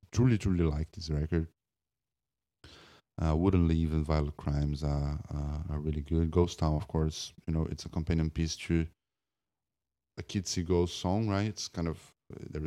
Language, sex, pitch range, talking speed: English, male, 80-95 Hz, 175 wpm